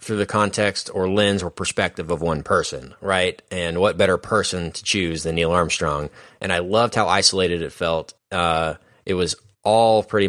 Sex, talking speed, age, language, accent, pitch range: male, 185 wpm, 20-39, English, American, 90-110 Hz